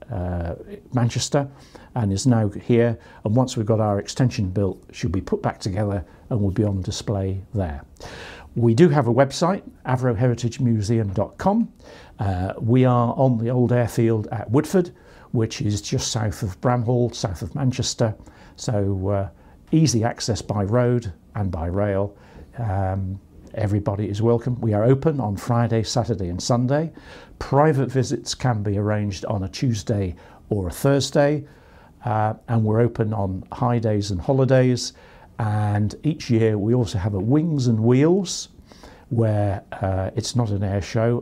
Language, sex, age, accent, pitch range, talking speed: English, male, 60-79, British, 100-125 Hz, 150 wpm